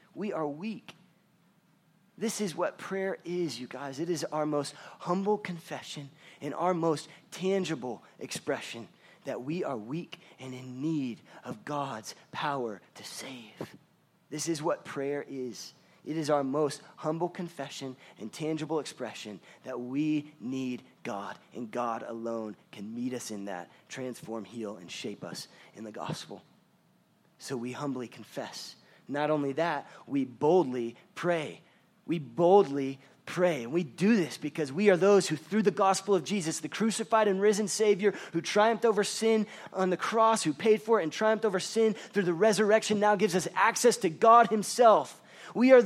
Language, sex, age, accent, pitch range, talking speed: English, male, 30-49, American, 145-205 Hz, 165 wpm